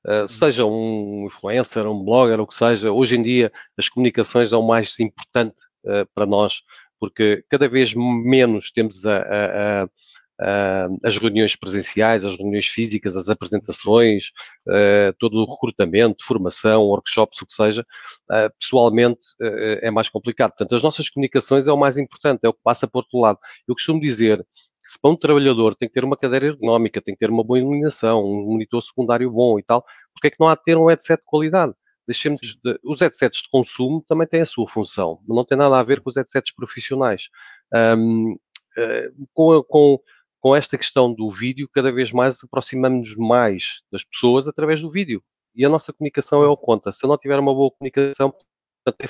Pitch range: 110-135 Hz